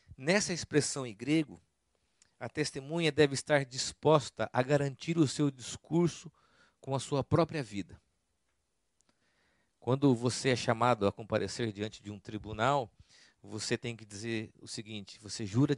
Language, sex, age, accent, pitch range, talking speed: Portuguese, male, 50-69, Brazilian, 115-150 Hz, 140 wpm